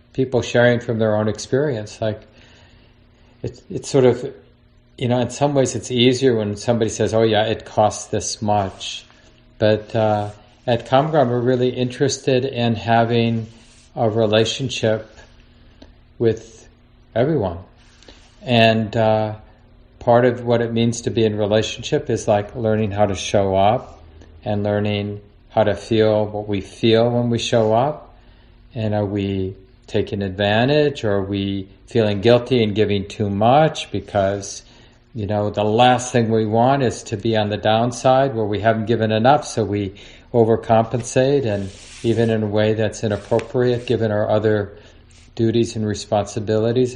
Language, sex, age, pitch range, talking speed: English, male, 50-69, 105-120 Hz, 150 wpm